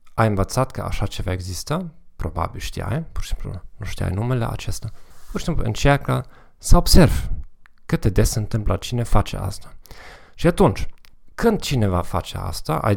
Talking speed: 165 wpm